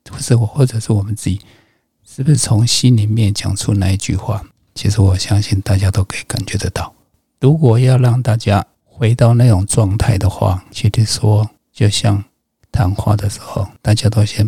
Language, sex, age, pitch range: Chinese, male, 50-69, 100-115 Hz